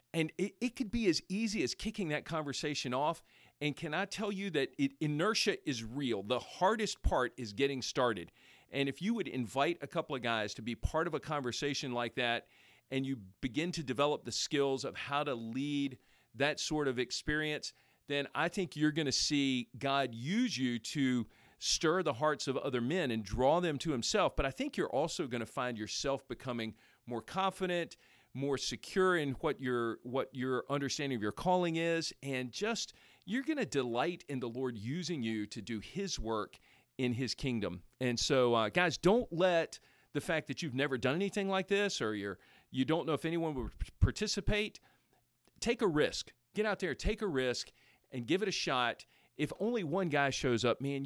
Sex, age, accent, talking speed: male, 40-59, American, 195 wpm